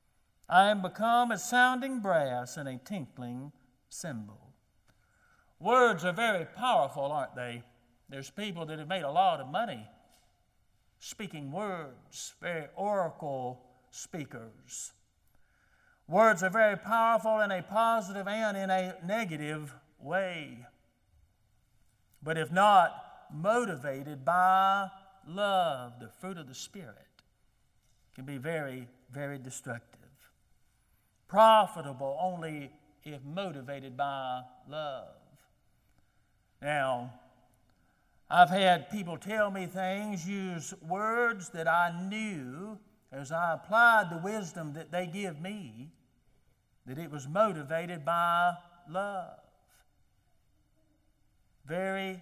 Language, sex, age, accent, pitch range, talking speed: English, male, 50-69, American, 130-195 Hz, 105 wpm